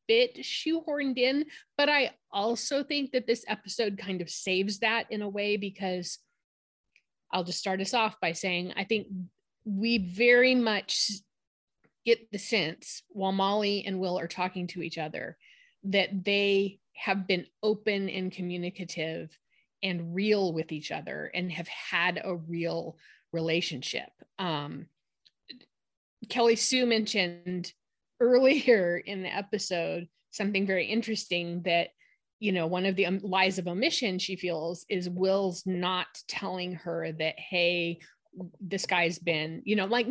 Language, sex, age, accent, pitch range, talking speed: English, female, 30-49, American, 175-220 Hz, 140 wpm